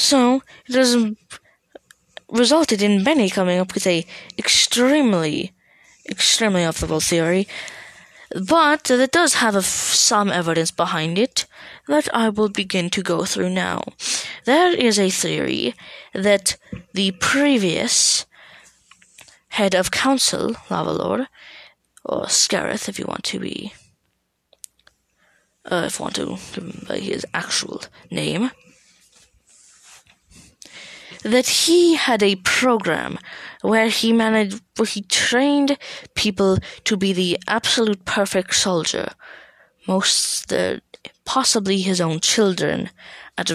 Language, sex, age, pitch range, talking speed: English, female, 20-39, 180-240 Hz, 115 wpm